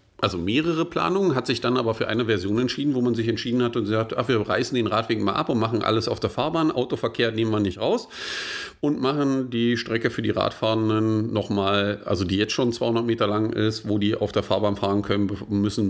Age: 50-69